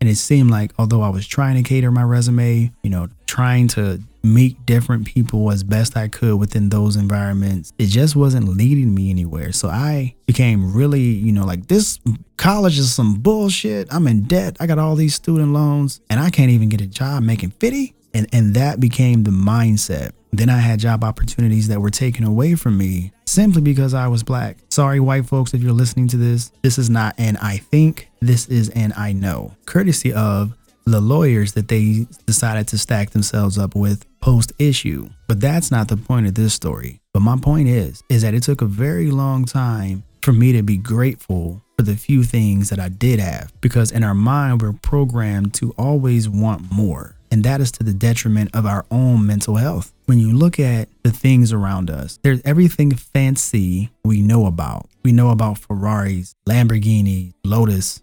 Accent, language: American, English